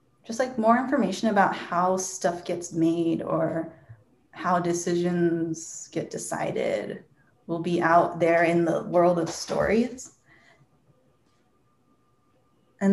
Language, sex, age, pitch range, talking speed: English, female, 20-39, 170-210 Hz, 110 wpm